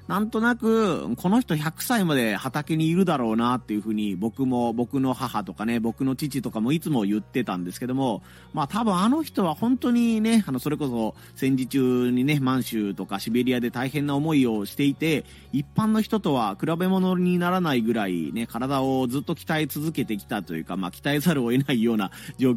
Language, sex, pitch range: Japanese, male, 110-155 Hz